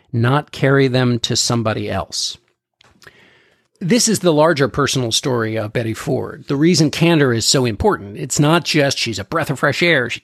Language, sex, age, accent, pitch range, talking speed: English, male, 50-69, American, 110-145 Hz, 180 wpm